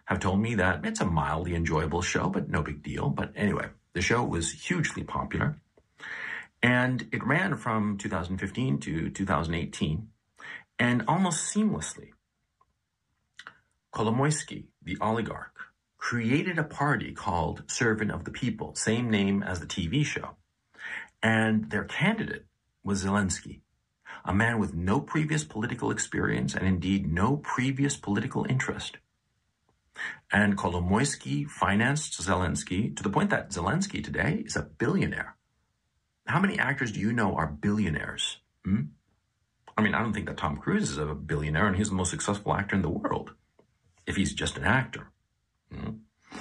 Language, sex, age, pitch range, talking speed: English, male, 50-69, 90-115 Hz, 145 wpm